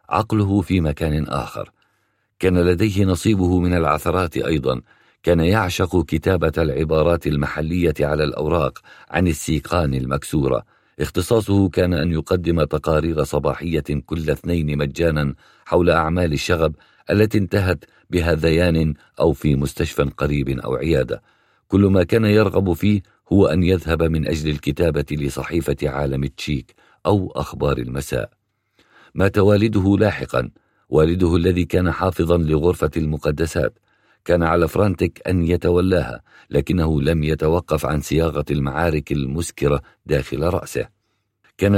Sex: male